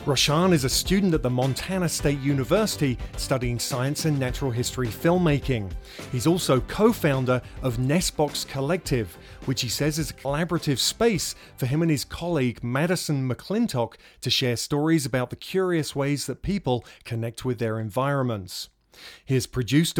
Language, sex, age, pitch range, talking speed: English, male, 40-59, 125-160 Hz, 155 wpm